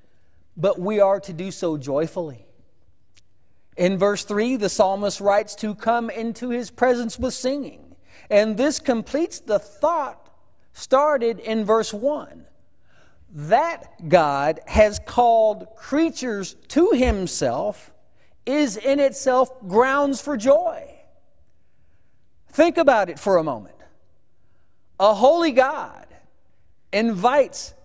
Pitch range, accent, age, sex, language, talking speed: 180-260 Hz, American, 40-59, male, English, 110 wpm